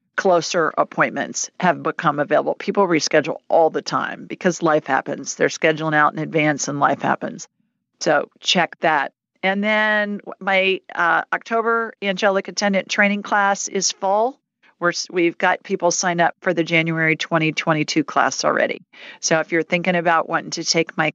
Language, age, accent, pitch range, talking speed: English, 40-59, American, 160-200 Hz, 155 wpm